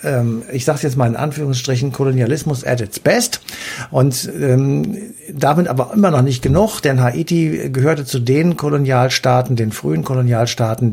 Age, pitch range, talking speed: 60-79, 125-155 Hz, 150 wpm